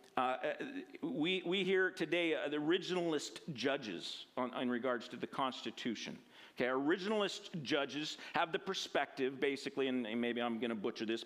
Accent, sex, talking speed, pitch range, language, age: American, male, 155 wpm, 150-215 Hz, English, 50-69